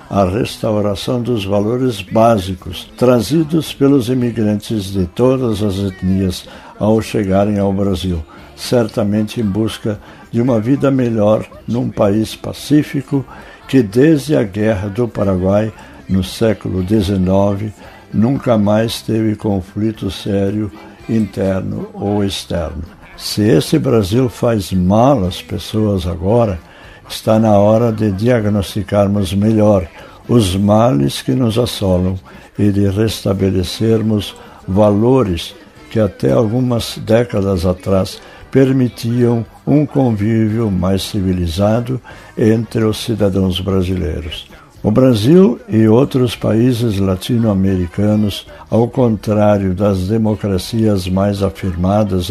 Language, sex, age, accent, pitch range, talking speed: Portuguese, male, 60-79, Brazilian, 95-115 Hz, 105 wpm